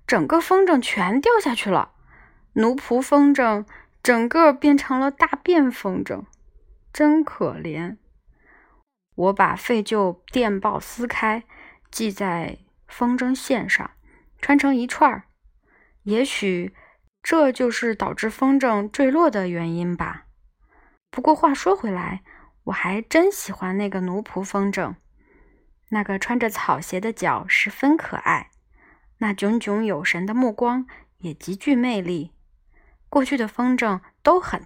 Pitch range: 195-275 Hz